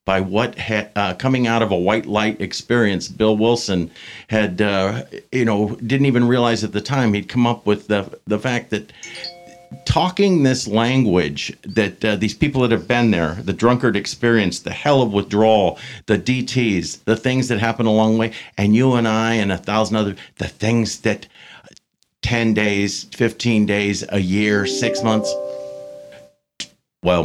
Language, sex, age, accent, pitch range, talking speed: English, male, 50-69, American, 100-115 Hz, 170 wpm